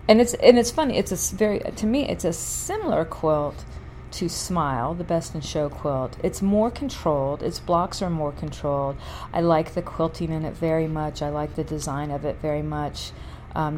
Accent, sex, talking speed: American, female, 200 wpm